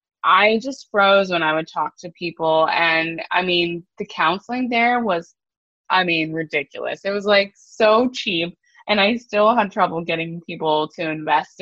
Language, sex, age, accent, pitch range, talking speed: English, female, 20-39, American, 160-195 Hz, 170 wpm